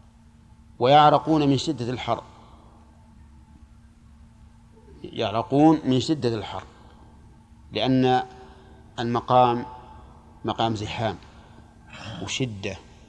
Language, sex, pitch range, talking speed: Arabic, male, 105-130 Hz, 60 wpm